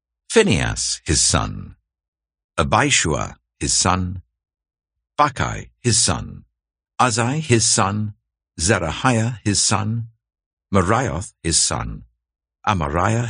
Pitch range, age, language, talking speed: 75-115 Hz, 60-79, English, 85 wpm